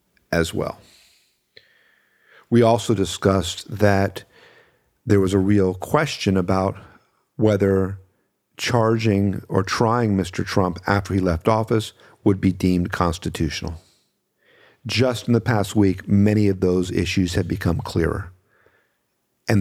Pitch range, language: 90-110 Hz, English